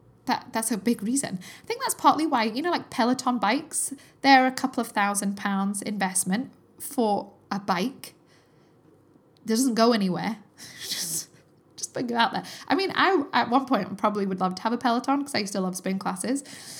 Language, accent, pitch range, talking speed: English, British, 200-275 Hz, 195 wpm